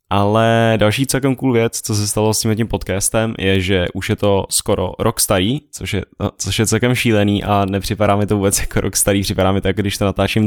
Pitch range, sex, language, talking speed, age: 95-110 Hz, male, Czech, 220 wpm, 10-29